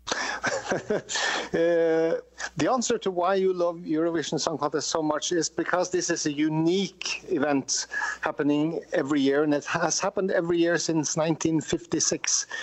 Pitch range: 150-190 Hz